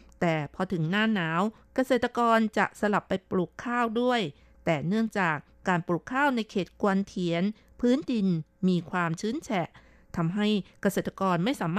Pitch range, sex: 175-220 Hz, female